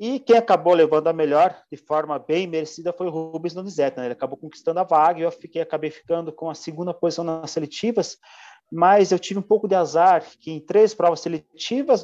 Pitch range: 165-205 Hz